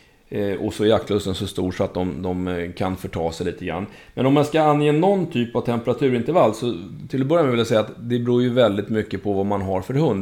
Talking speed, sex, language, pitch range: 260 wpm, male, Swedish, 100-125 Hz